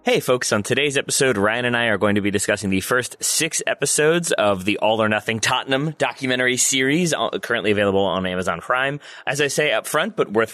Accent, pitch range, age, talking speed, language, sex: American, 100-140 Hz, 30-49, 210 wpm, English, male